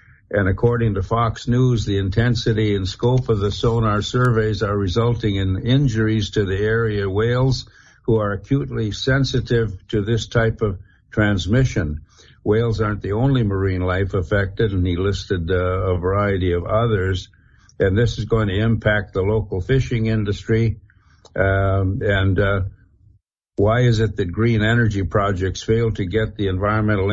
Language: English